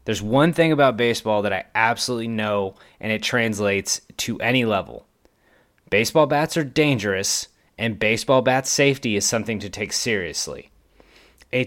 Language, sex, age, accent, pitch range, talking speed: English, male, 30-49, American, 110-140 Hz, 150 wpm